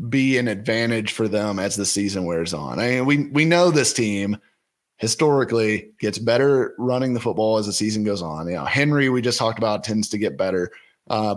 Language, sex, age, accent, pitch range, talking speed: English, male, 30-49, American, 100-125 Hz, 210 wpm